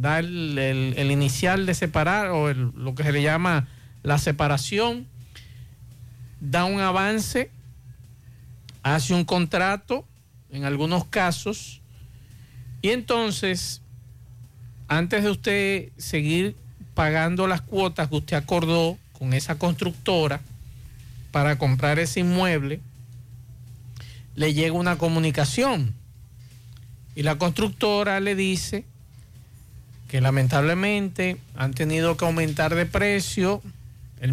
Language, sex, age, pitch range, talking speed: Spanish, male, 50-69, 125-180 Hz, 105 wpm